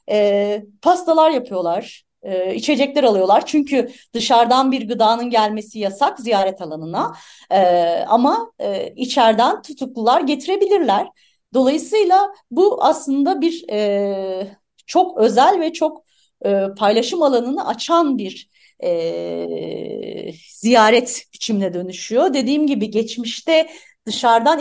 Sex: female